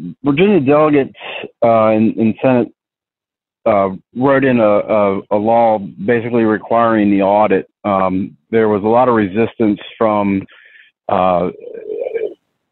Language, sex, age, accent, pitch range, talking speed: English, male, 40-59, American, 105-120 Hz, 120 wpm